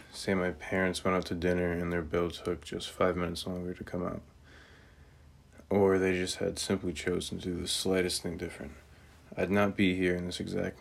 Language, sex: English, male